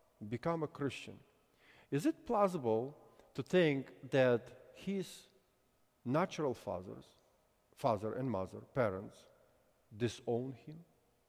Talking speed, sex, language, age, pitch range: 95 wpm, male, English, 50-69, 115-155 Hz